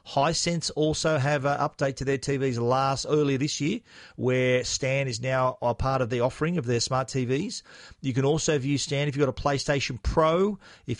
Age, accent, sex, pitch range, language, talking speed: 40-59, Australian, male, 120-145 Hz, English, 200 wpm